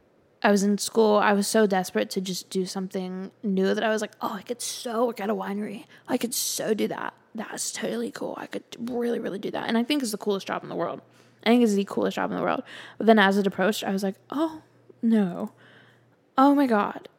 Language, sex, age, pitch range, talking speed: English, female, 10-29, 195-235 Hz, 250 wpm